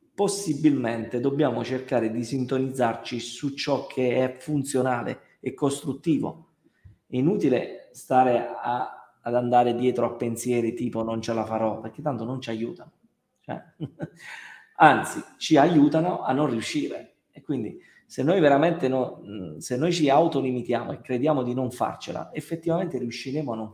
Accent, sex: native, male